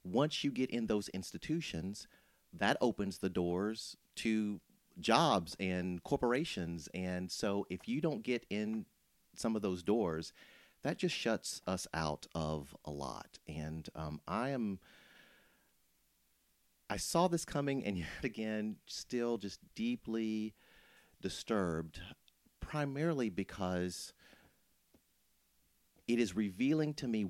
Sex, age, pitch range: male, 40-59, 80-105 Hz